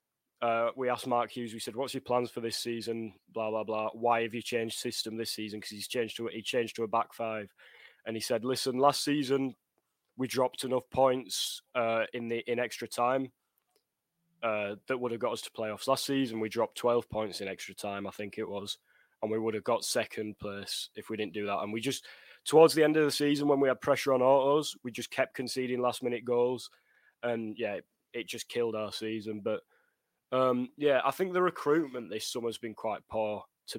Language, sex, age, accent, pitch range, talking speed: English, male, 10-29, British, 115-130 Hz, 225 wpm